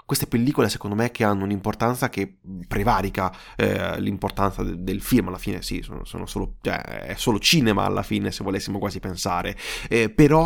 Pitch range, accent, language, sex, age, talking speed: 100-125 Hz, native, Italian, male, 20-39, 155 wpm